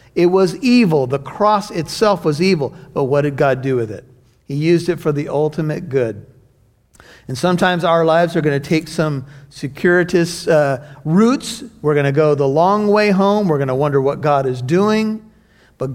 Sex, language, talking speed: male, English, 180 wpm